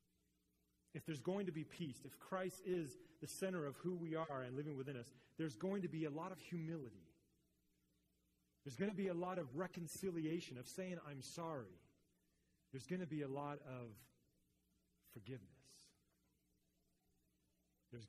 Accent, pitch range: American, 95-160 Hz